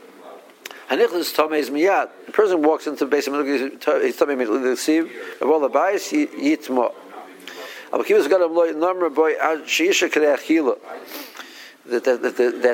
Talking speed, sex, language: 45 wpm, male, English